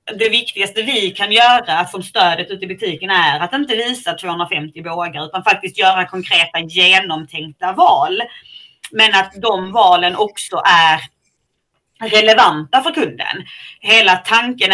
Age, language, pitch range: 30-49, Swedish, 180-240 Hz